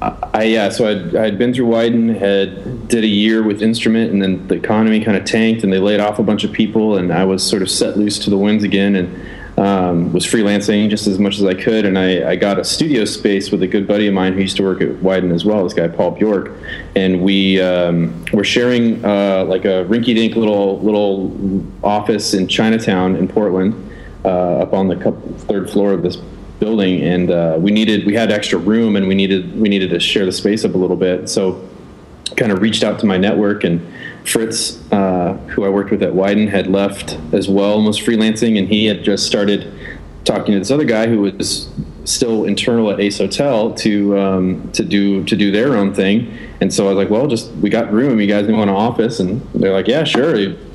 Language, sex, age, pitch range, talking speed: English, male, 30-49, 95-110 Hz, 225 wpm